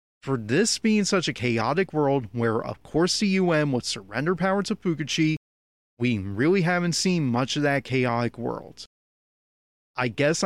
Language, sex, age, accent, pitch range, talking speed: English, male, 30-49, American, 120-165 Hz, 160 wpm